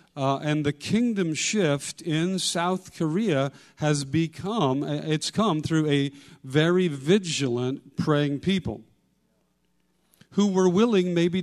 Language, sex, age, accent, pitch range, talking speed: English, male, 50-69, American, 140-195 Hz, 120 wpm